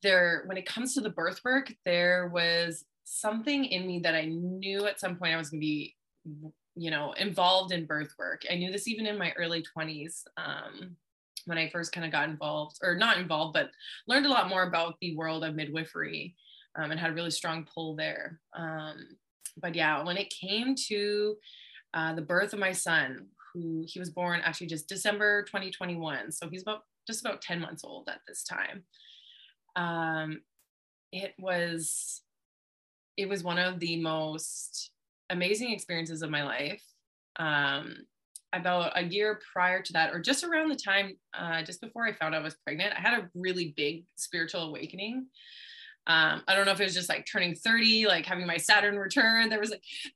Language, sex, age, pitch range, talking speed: English, female, 20-39, 165-205 Hz, 190 wpm